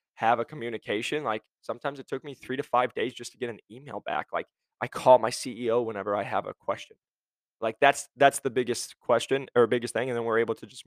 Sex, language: male, English